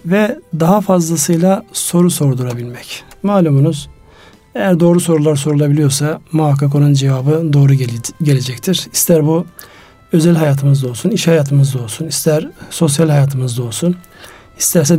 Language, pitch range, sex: Turkish, 140-165 Hz, male